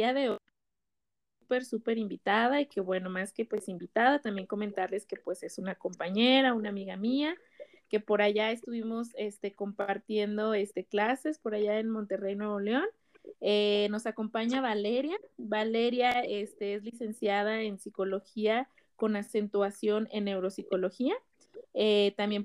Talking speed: 140 wpm